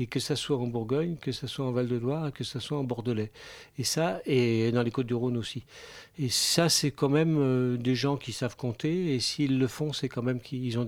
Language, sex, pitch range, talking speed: French, male, 120-140 Hz, 250 wpm